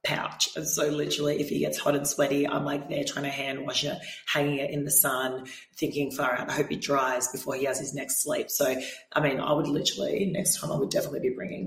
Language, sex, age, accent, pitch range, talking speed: English, female, 30-49, Australian, 140-180 Hz, 245 wpm